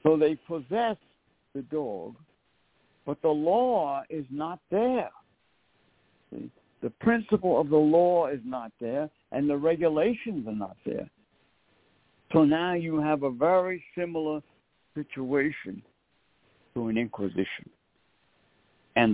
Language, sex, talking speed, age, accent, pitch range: English, male, 120 wpm, 60-79, American, 120-165 Hz